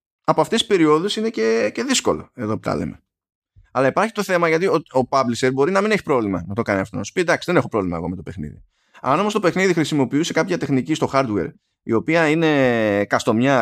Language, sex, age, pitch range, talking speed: Greek, male, 20-39, 110-155 Hz, 235 wpm